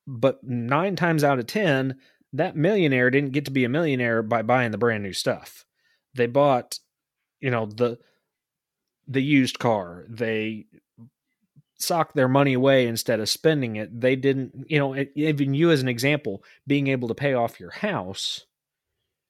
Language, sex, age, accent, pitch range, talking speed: English, male, 30-49, American, 110-140 Hz, 170 wpm